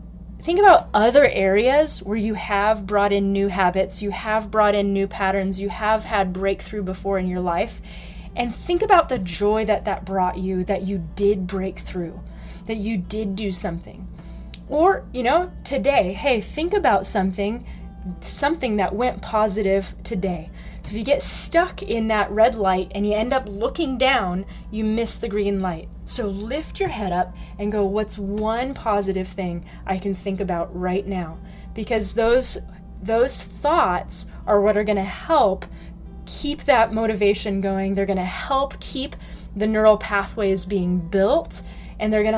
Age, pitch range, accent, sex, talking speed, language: 20-39, 190-225 Hz, American, female, 170 wpm, English